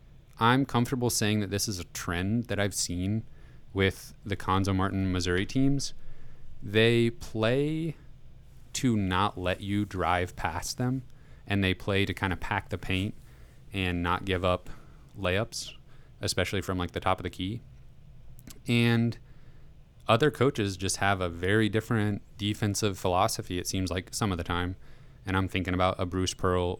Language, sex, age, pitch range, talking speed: English, male, 30-49, 90-120 Hz, 160 wpm